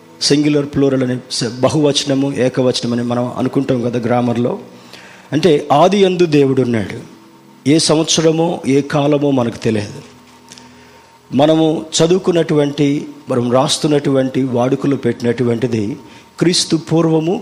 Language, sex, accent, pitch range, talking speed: Telugu, male, native, 120-150 Hz, 100 wpm